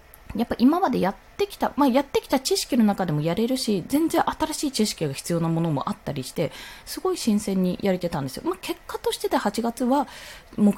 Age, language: 20-39, Japanese